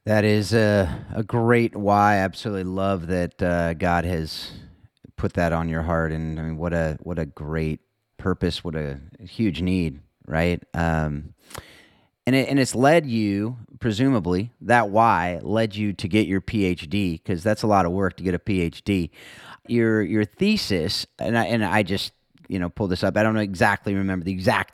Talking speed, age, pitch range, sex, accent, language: 190 wpm, 30-49, 90-115 Hz, male, American, English